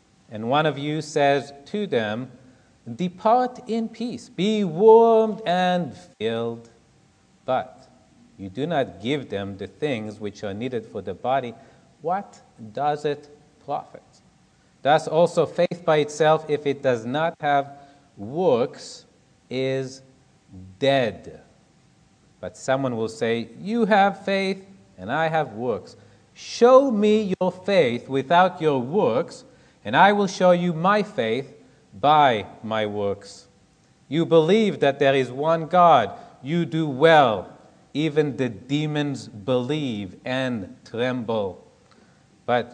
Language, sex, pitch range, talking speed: English, male, 130-180 Hz, 125 wpm